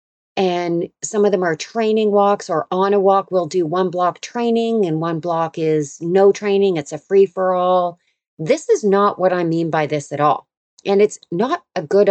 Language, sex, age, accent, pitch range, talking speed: English, female, 40-59, American, 170-215 Hz, 210 wpm